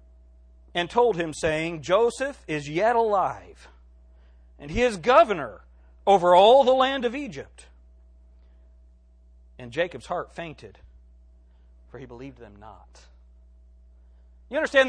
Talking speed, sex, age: 115 wpm, male, 40-59